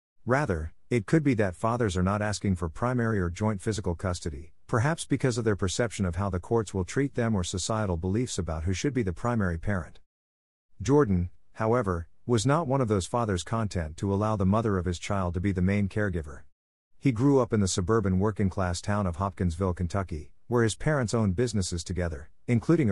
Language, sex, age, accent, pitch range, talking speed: English, male, 50-69, American, 90-115 Hz, 200 wpm